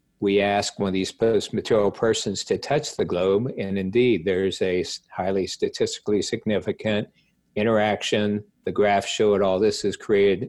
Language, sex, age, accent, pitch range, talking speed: English, male, 50-69, American, 95-120 Hz, 160 wpm